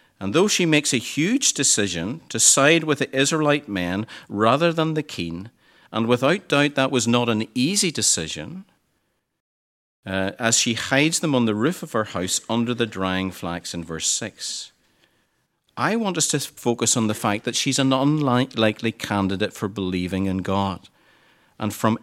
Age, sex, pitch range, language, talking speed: 50-69, male, 105-145 Hz, English, 170 wpm